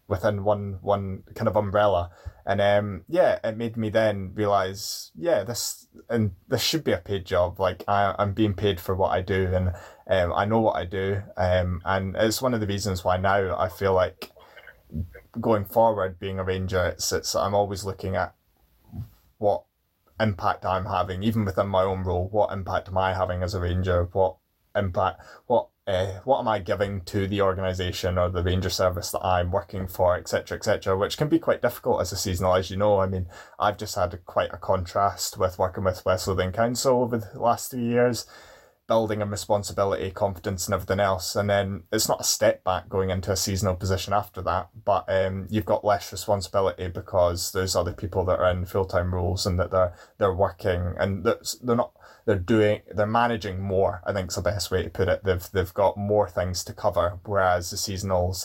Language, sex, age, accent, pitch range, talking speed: English, male, 20-39, British, 90-105 Hz, 210 wpm